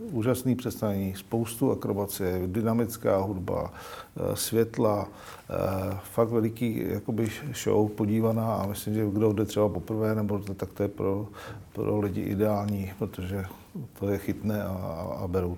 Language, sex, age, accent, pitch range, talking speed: Czech, male, 50-69, native, 95-115 Hz, 130 wpm